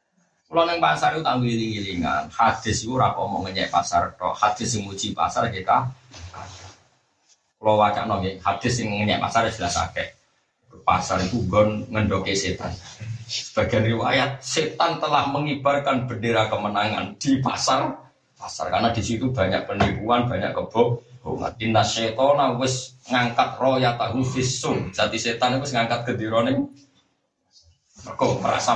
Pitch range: 105-130 Hz